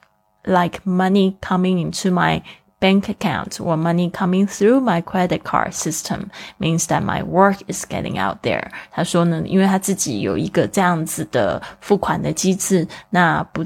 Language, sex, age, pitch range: Chinese, female, 20-39, 170-195 Hz